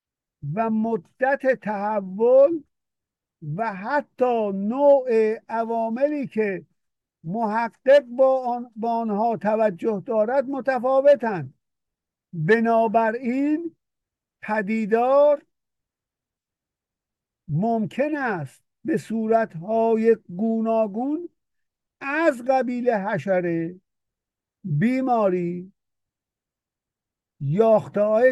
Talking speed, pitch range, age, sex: 60 wpm, 175-230 Hz, 50-69, male